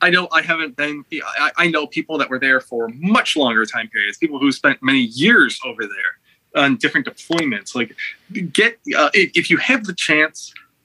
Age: 20-39